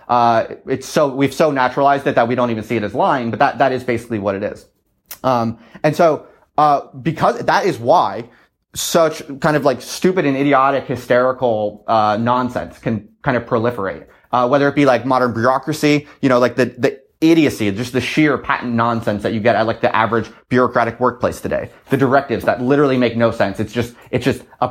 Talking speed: 205 wpm